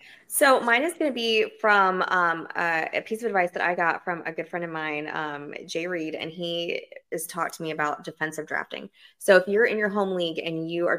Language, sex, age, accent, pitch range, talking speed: English, female, 20-39, American, 155-180 Hz, 240 wpm